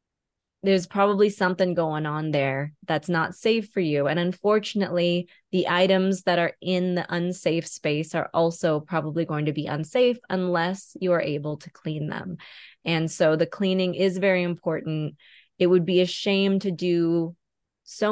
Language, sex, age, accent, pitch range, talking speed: English, female, 20-39, American, 160-190 Hz, 165 wpm